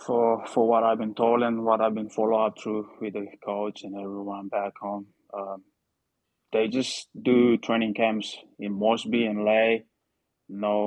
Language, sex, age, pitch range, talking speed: English, male, 20-39, 100-105 Hz, 170 wpm